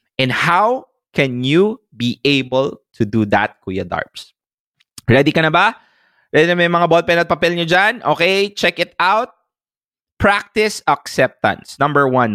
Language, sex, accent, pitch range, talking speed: English, male, Filipino, 125-200 Hz, 155 wpm